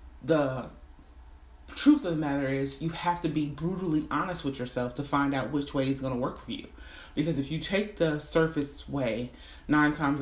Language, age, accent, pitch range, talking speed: English, 30-49, American, 130-175 Hz, 200 wpm